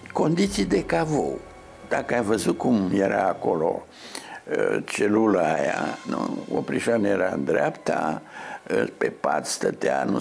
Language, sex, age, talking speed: Romanian, male, 70-89, 110 wpm